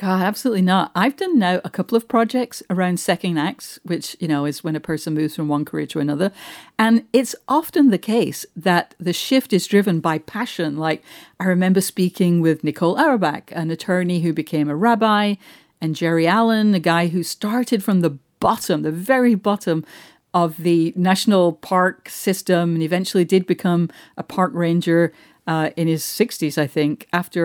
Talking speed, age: 180 wpm, 50-69